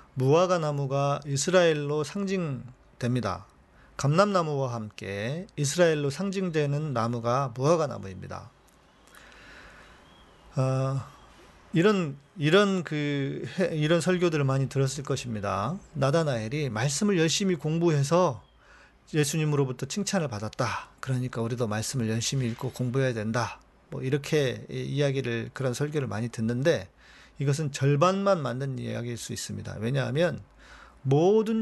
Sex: male